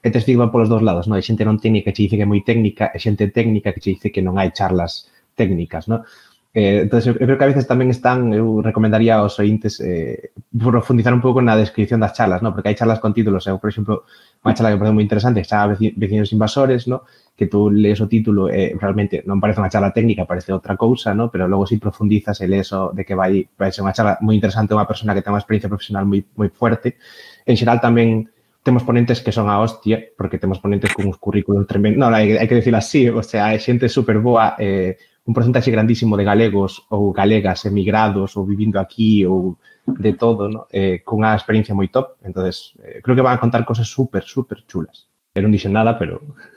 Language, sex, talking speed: English, male, 230 wpm